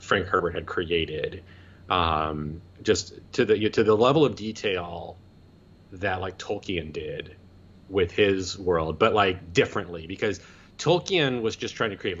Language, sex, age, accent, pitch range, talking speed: English, male, 30-49, American, 90-110 Hz, 150 wpm